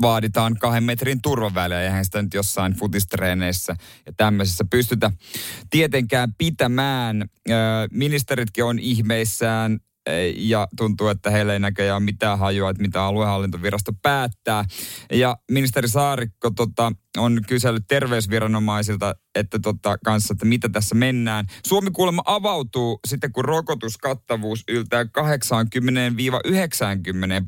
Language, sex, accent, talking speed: Finnish, male, native, 105 wpm